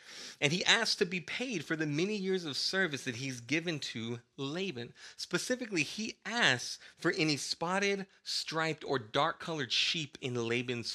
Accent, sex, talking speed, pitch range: American, male, 160 wpm, 130-190 Hz